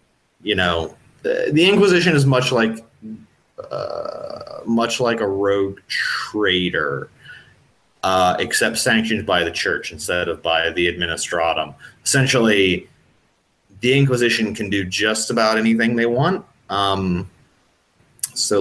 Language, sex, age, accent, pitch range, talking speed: English, male, 30-49, American, 90-115 Hz, 120 wpm